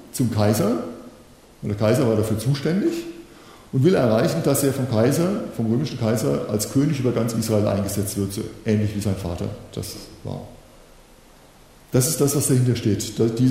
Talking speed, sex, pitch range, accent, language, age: 170 wpm, male, 110-140 Hz, German, German, 50-69